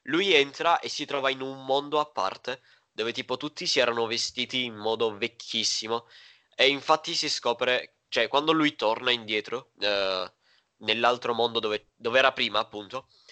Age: 20-39